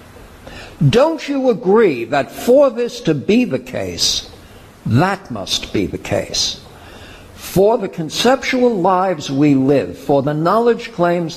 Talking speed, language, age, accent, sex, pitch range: 130 wpm, English, 60-79, American, male, 115-185 Hz